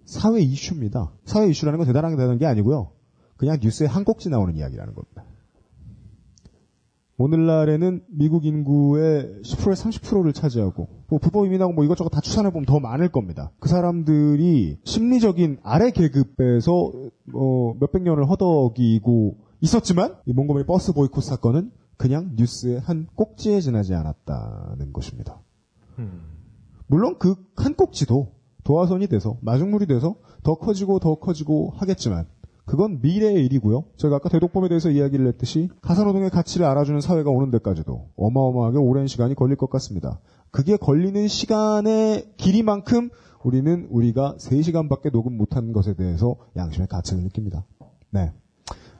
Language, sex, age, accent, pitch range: Korean, male, 30-49, native, 120-175 Hz